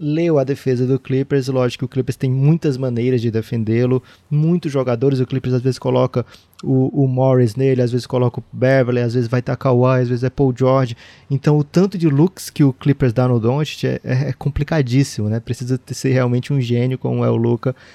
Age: 20-39